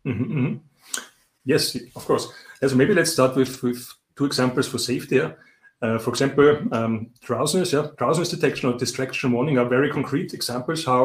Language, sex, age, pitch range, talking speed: English, male, 30-49, 120-140 Hz, 170 wpm